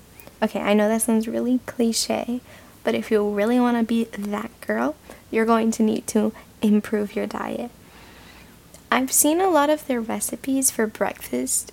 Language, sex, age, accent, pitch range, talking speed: English, female, 10-29, American, 210-240 Hz, 170 wpm